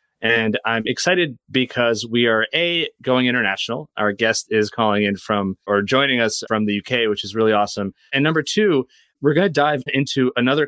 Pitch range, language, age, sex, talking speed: 105-125 Hz, English, 30-49, male, 190 wpm